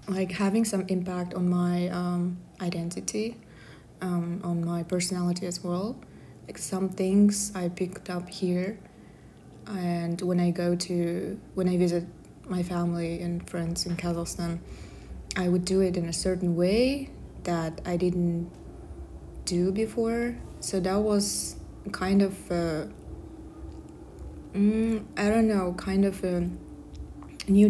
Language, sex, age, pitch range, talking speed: English, female, 20-39, 170-195 Hz, 130 wpm